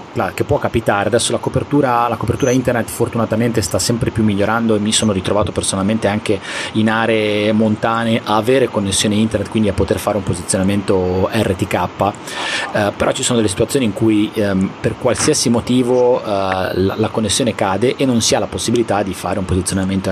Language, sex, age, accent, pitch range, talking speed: Italian, male, 30-49, native, 100-120 Hz, 180 wpm